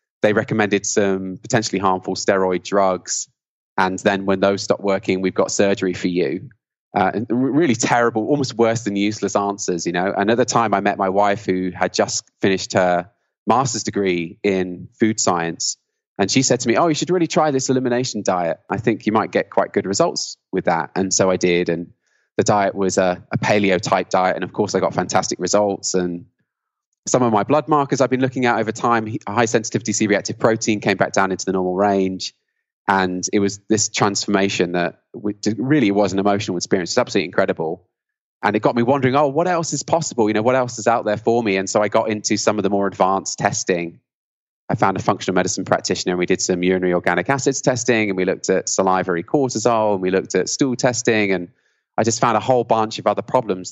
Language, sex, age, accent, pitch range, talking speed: English, male, 20-39, British, 95-120 Hz, 215 wpm